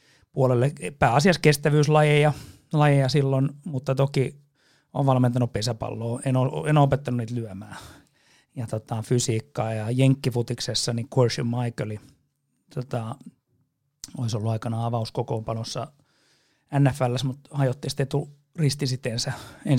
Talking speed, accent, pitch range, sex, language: 105 wpm, native, 120-145 Hz, male, Finnish